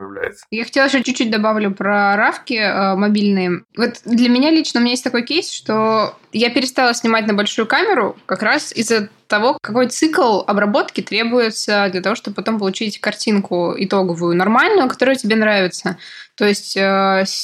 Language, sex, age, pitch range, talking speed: Russian, female, 20-39, 205-255 Hz, 160 wpm